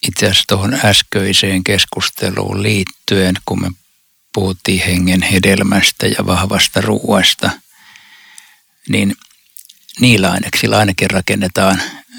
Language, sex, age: Finnish, male, 60-79